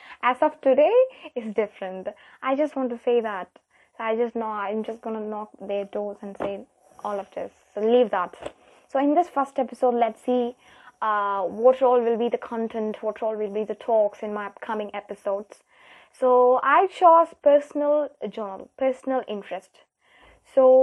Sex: female